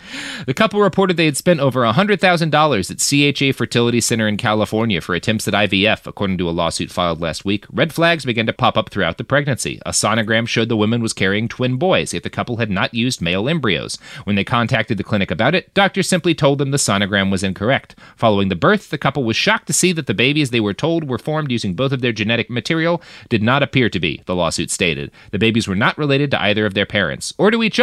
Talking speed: 235 wpm